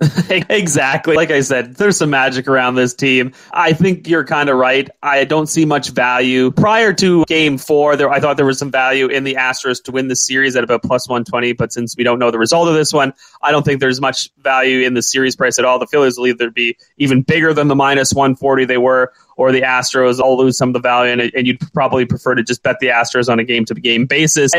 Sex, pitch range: male, 130-155 Hz